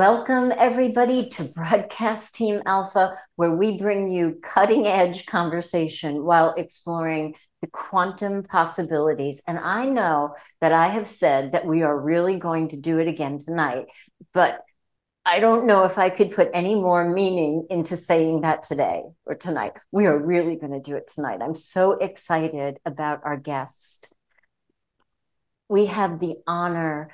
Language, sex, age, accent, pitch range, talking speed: English, female, 50-69, American, 160-190 Hz, 155 wpm